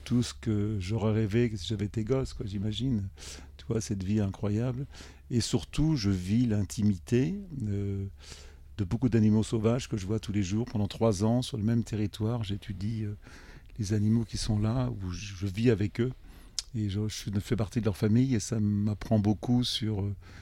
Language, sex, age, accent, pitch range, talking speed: French, male, 50-69, French, 105-115 Hz, 180 wpm